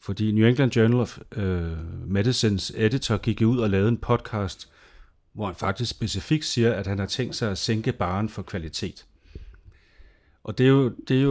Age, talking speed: 40-59, 170 wpm